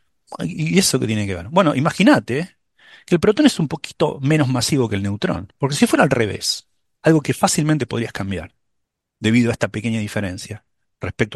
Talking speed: 185 wpm